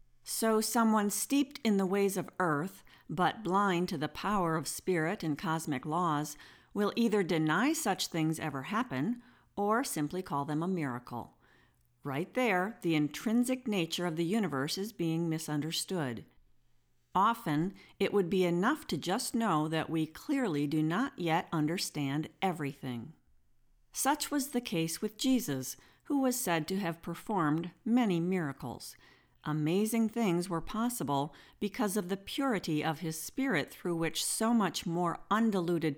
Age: 50-69